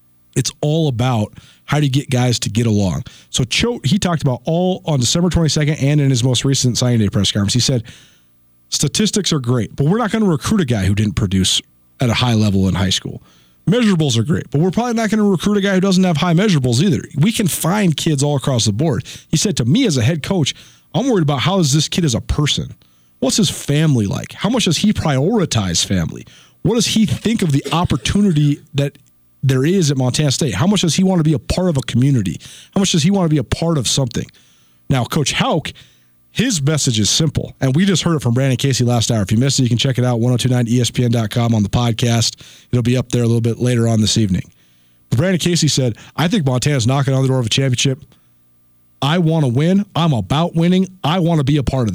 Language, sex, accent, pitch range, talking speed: English, male, American, 115-165 Hz, 240 wpm